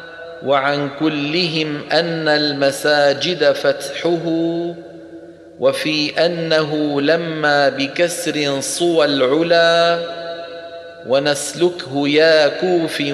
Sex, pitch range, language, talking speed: male, 145-165 Hz, Arabic, 65 wpm